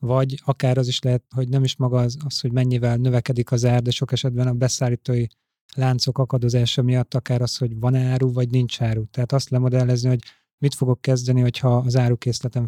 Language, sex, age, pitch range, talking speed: Hungarian, male, 30-49, 120-130 Hz, 200 wpm